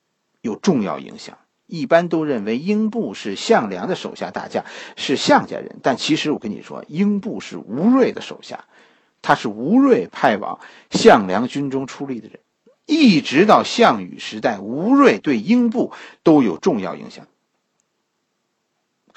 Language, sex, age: Chinese, male, 50-69